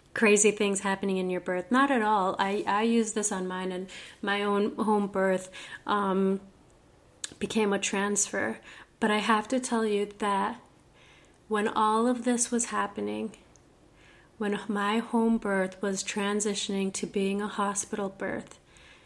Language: English